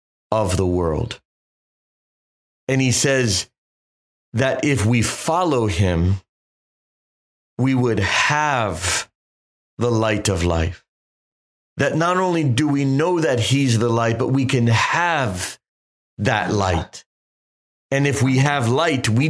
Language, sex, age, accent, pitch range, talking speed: English, male, 40-59, American, 95-135 Hz, 125 wpm